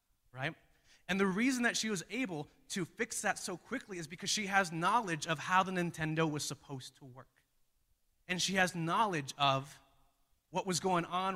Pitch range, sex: 135-180 Hz, male